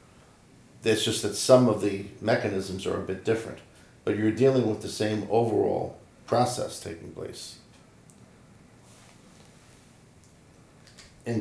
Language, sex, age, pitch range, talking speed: English, male, 50-69, 100-115 Hz, 115 wpm